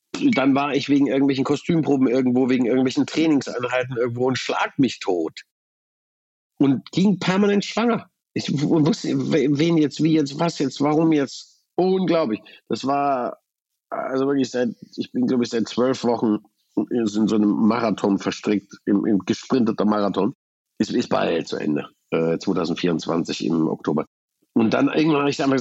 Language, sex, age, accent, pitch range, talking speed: German, male, 50-69, German, 110-150 Hz, 160 wpm